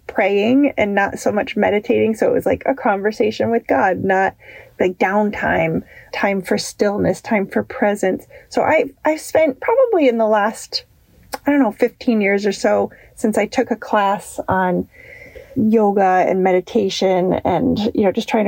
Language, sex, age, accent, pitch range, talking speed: English, female, 30-49, American, 205-255 Hz, 170 wpm